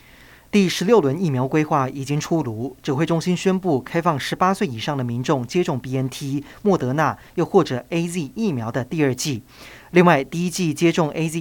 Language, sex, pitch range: Chinese, male, 130-175 Hz